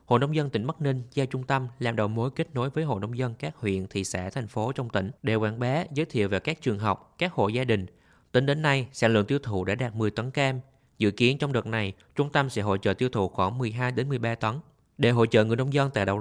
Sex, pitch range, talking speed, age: male, 105-140 Hz, 280 wpm, 20-39